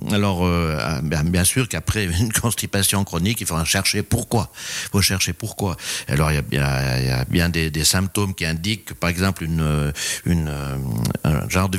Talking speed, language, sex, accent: 190 wpm, French, male, French